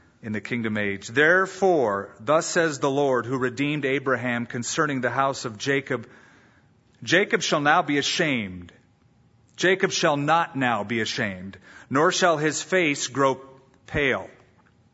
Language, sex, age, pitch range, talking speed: English, male, 40-59, 120-170 Hz, 135 wpm